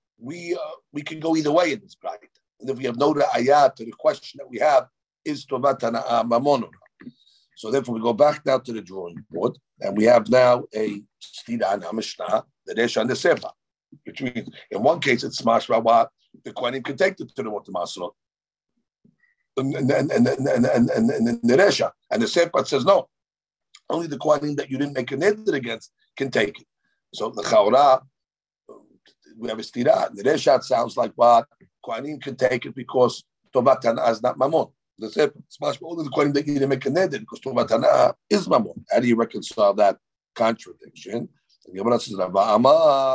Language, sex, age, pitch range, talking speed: English, male, 50-69, 125-150 Hz, 190 wpm